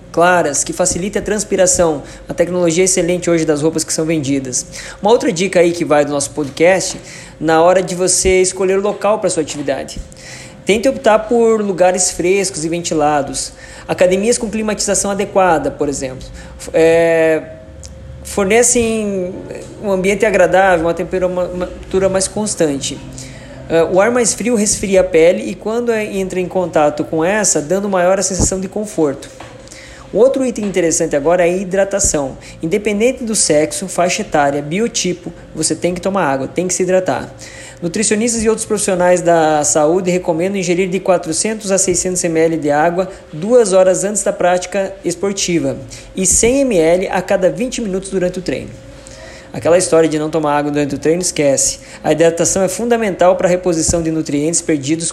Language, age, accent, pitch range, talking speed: Portuguese, 20-39, Brazilian, 160-195 Hz, 165 wpm